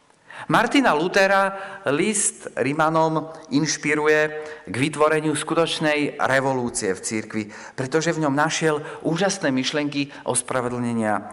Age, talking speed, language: 40-59, 100 wpm, Slovak